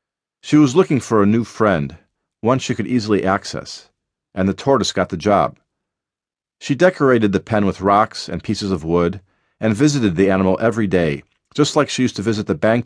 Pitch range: 95-130 Hz